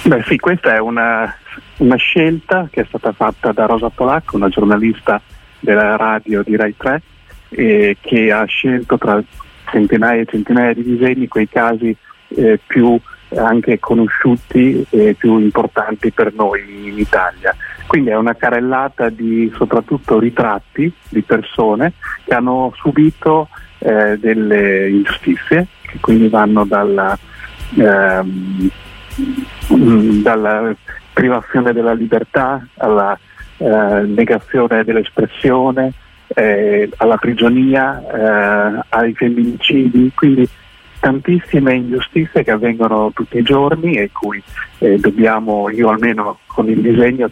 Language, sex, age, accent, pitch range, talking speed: Italian, male, 40-59, native, 110-130 Hz, 120 wpm